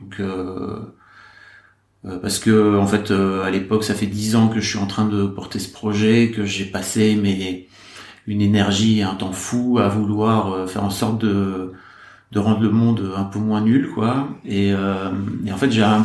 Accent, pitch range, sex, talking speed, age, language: French, 100-115 Hz, male, 205 wpm, 40-59, French